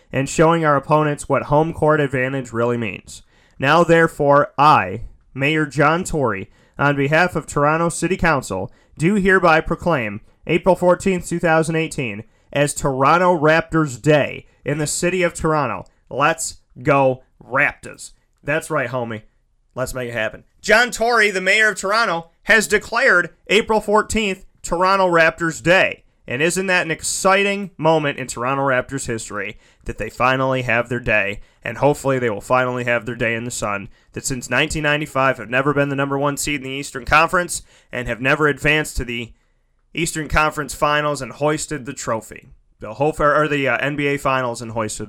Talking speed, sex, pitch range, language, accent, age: 160 wpm, male, 125-175 Hz, English, American, 30-49